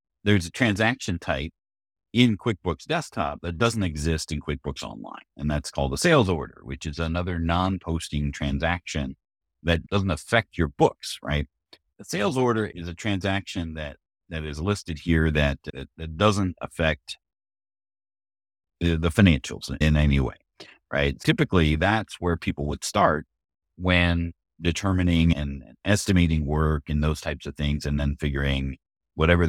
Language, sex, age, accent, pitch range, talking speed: English, male, 50-69, American, 75-95 Hz, 145 wpm